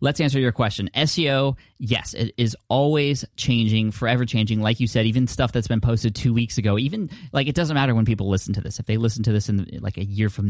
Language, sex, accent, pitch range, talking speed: English, male, American, 95-120 Hz, 245 wpm